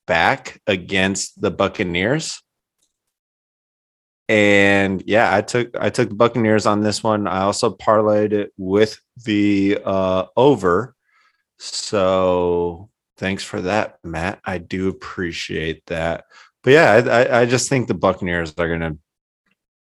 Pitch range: 90-110 Hz